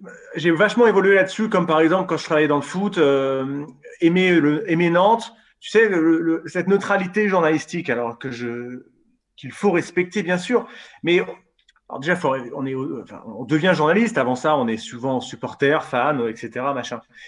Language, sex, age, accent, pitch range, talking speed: French, male, 30-49, French, 130-195 Hz, 180 wpm